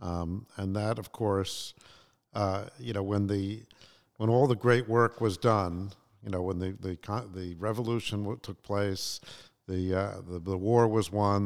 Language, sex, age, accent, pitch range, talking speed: English, male, 50-69, American, 90-110 Hz, 180 wpm